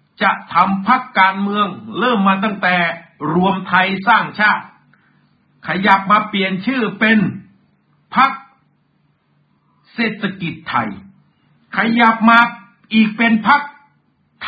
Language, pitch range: Thai, 190-245 Hz